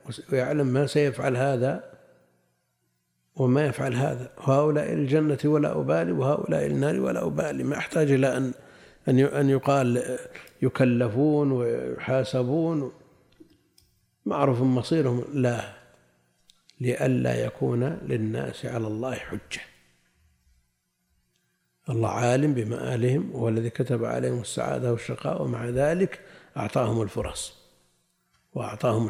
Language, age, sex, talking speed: Arabic, 50-69, male, 95 wpm